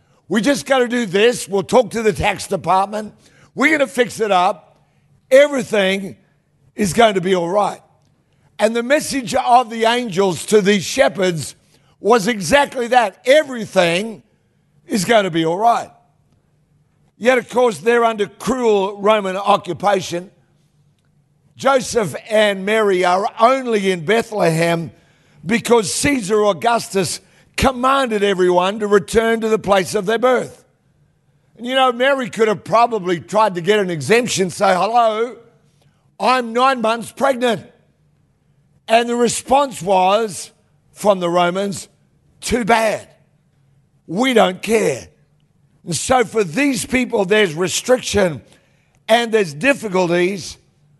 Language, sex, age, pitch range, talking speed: English, male, 60-79, 160-235 Hz, 130 wpm